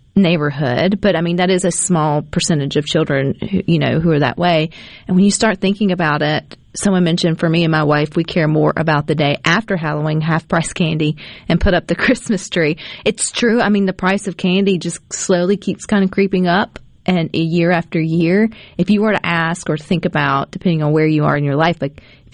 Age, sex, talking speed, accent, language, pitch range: 30-49, female, 230 wpm, American, English, 150-190 Hz